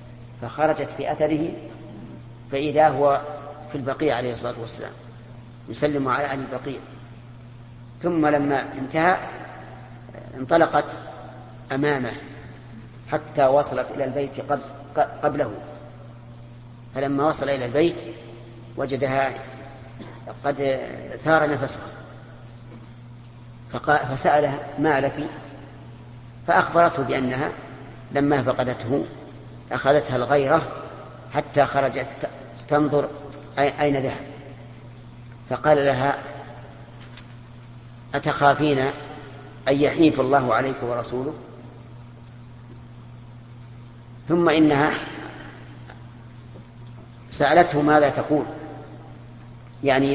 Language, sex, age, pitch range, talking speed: Arabic, female, 40-59, 120-145 Hz, 70 wpm